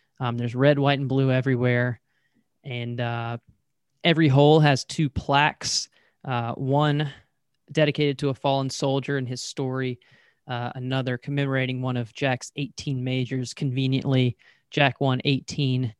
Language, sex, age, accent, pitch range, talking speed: English, male, 20-39, American, 130-145 Hz, 135 wpm